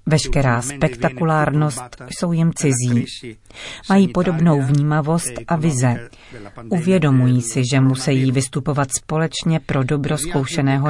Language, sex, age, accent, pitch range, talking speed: Czech, female, 40-59, native, 130-155 Hz, 105 wpm